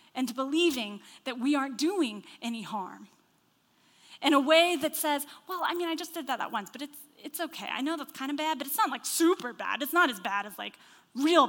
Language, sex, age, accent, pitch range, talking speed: English, female, 10-29, American, 230-295 Hz, 240 wpm